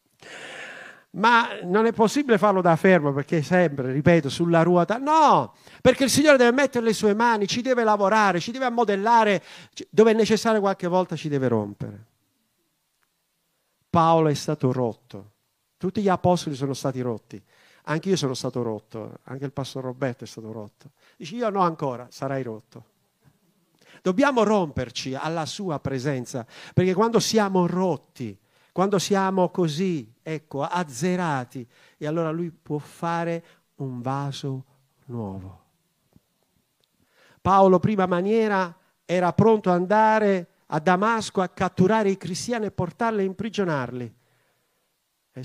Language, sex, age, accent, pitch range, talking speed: Italian, male, 50-69, native, 135-190 Hz, 135 wpm